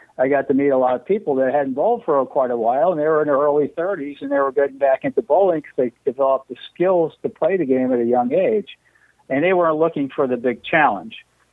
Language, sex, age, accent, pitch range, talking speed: English, male, 50-69, American, 125-160 Hz, 260 wpm